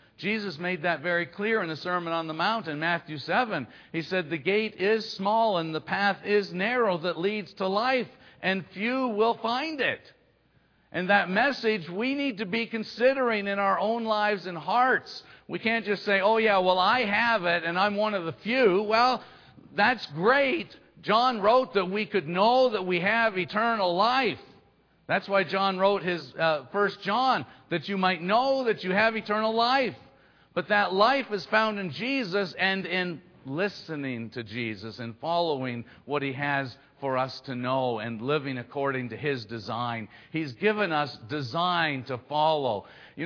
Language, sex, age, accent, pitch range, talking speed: English, male, 50-69, American, 160-215 Hz, 180 wpm